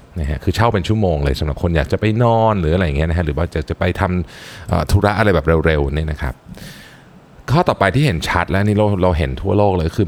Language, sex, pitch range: Thai, male, 75-105 Hz